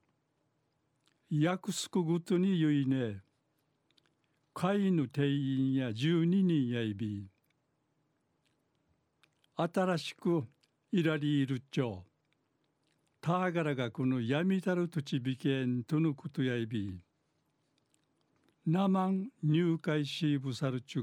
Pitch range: 135-165 Hz